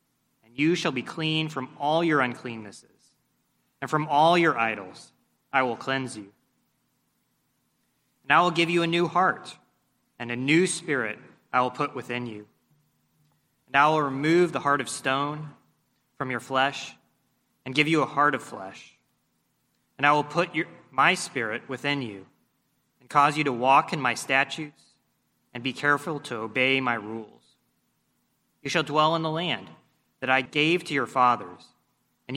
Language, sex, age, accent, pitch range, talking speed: English, male, 30-49, American, 125-155 Hz, 165 wpm